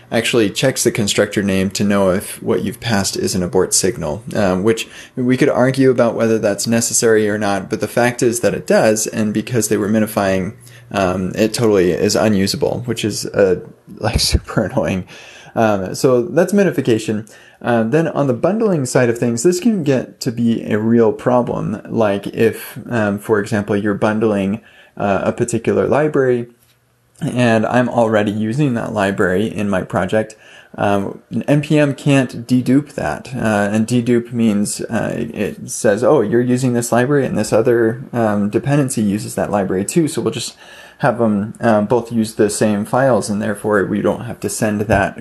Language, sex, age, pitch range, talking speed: English, male, 20-39, 105-125 Hz, 180 wpm